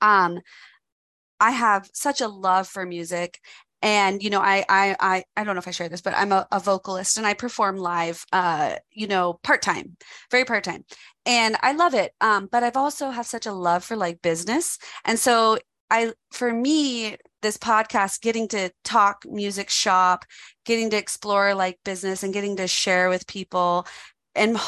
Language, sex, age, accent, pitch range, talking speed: English, female, 30-49, American, 180-215 Hz, 180 wpm